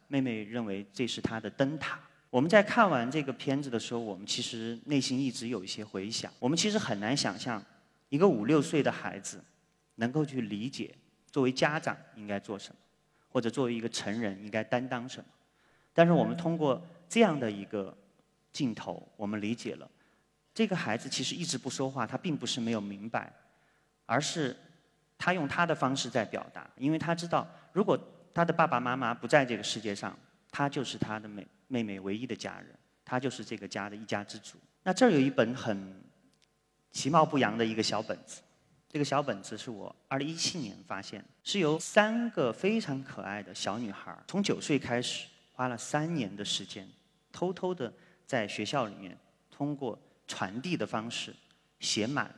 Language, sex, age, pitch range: Chinese, male, 30-49, 110-155 Hz